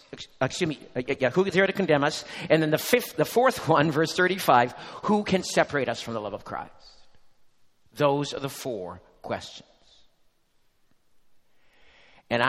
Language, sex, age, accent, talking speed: English, male, 50-69, American, 155 wpm